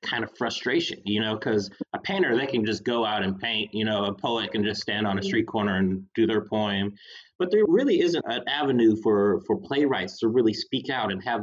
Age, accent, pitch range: 30-49, American, 105-130 Hz